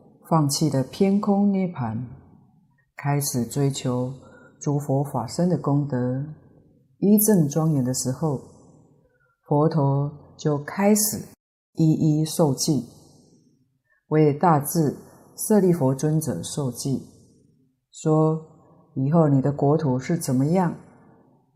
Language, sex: Chinese, female